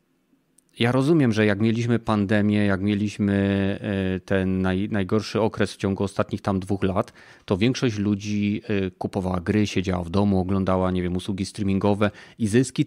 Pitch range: 100-120 Hz